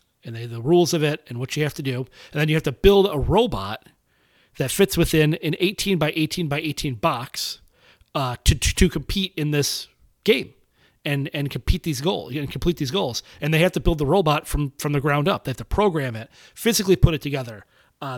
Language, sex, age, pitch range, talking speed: English, male, 30-49, 130-170 Hz, 230 wpm